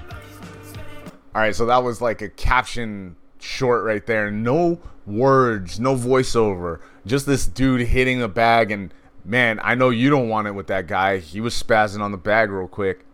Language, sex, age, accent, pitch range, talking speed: English, male, 30-49, American, 95-130 Hz, 180 wpm